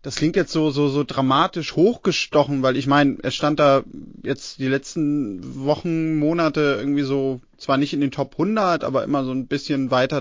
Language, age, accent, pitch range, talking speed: German, 30-49, German, 150-190 Hz, 195 wpm